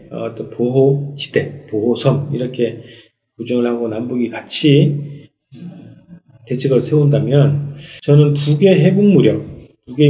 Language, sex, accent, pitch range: Korean, male, native, 125-160 Hz